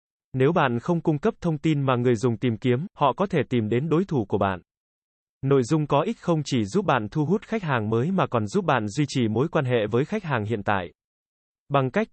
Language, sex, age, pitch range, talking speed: Vietnamese, male, 20-39, 120-155 Hz, 245 wpm